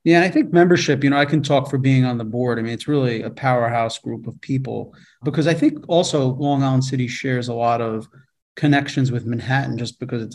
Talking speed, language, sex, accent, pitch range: 230 wpm, English, male, American, 120-145 Hz